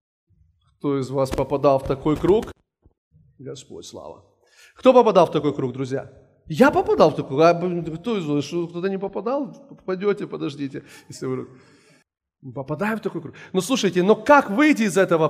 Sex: male